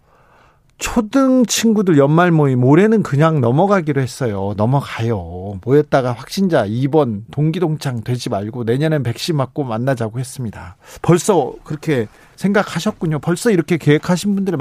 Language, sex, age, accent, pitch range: Korean, male, 40-59, native, 130-185 Hz